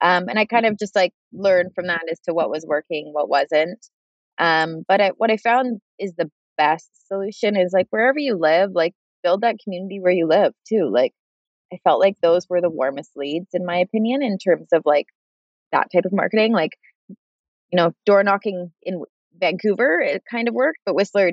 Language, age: English, 20-39